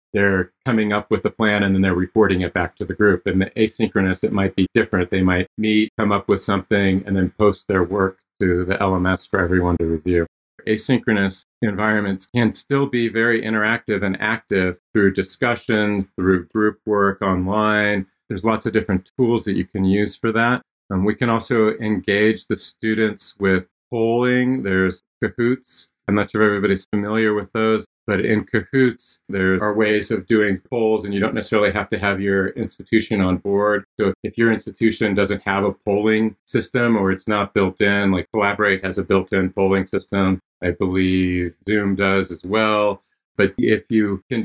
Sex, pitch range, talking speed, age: male, 95-110 Hz, 185 wpm, 40-59